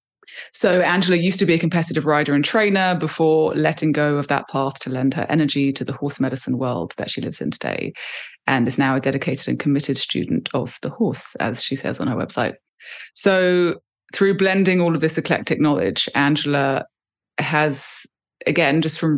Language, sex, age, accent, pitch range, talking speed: English, female, 20-39, British, 145-170 Hz, 190 wpm